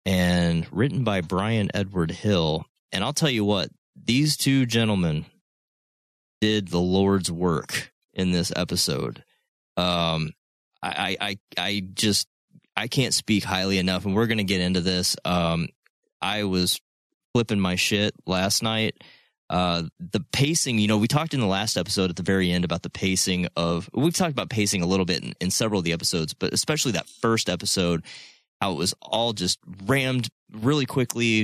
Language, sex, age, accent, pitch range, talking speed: English, male, 30-49, American, 90-115 Hz, 175 wpm